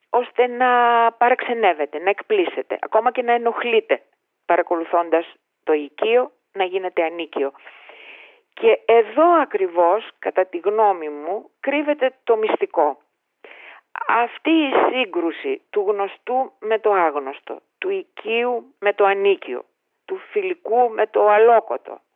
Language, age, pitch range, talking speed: Greek, 40-59, 185-285 Hz, 115 wpm